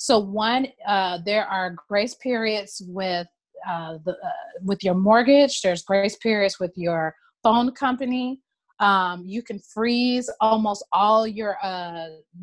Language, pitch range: English, 190-230 Hz